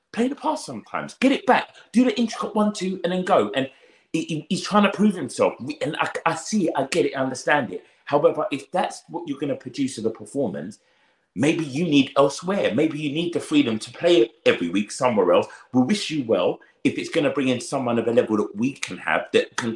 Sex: male